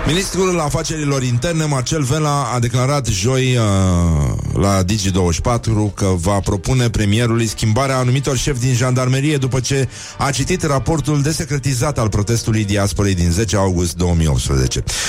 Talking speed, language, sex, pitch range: 130 wpm, Romanian, male, 105-130 Hz